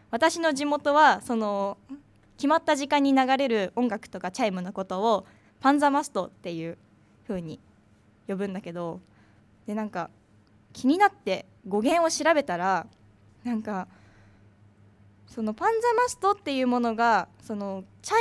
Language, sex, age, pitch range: Japanese, female, 20-39, 185-300 Hz